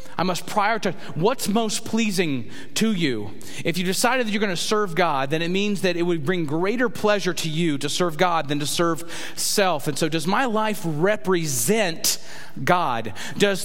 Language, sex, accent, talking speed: English, male, American, 190 wpm